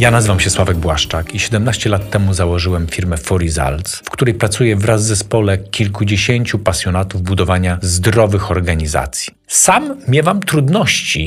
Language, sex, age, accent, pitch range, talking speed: Polish, male, 40-59, native, 90-115 Hz, 145 wpm